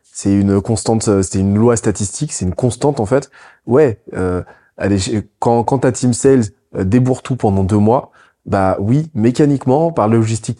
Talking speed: 170 wpm